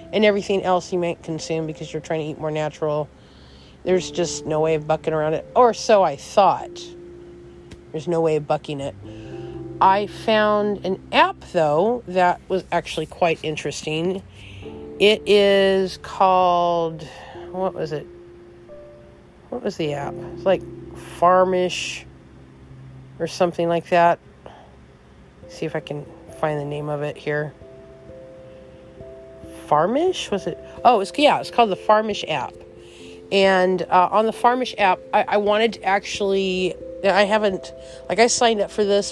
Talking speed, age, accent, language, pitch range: 150 wpm, 40-59, American, English, 150-200 Hz